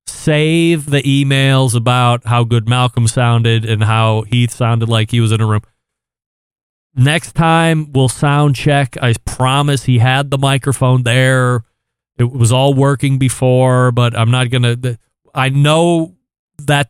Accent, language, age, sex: American, English, 40-59, male